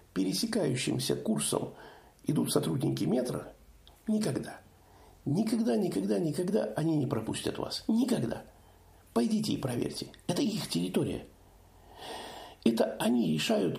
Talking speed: 100 wpm